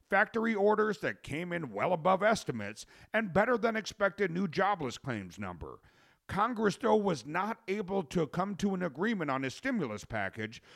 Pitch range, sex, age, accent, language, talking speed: 125-200 Hz, male, 50-69, American, English, 155 wpm